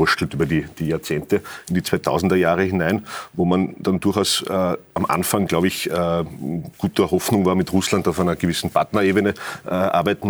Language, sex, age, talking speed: German, male, 40-59, 175 wpm